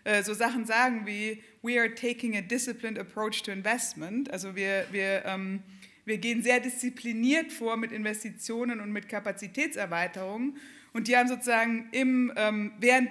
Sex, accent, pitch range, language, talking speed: female, German, 210-245 Hz, German, 150 wpm